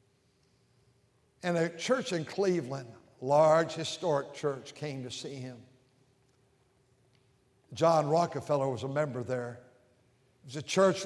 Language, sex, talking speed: English, male, 120 wpm